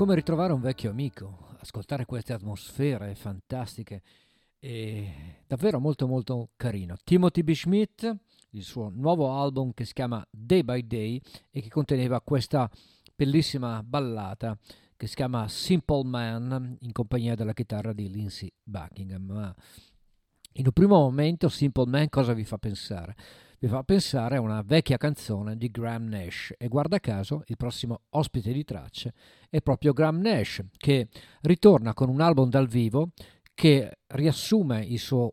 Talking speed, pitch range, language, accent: 150 wpm, 110-150 Hz, Italian, native